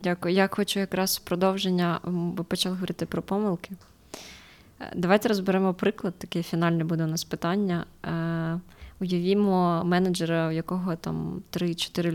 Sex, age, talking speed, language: female, 20-39, 125 wpm, Ukrainian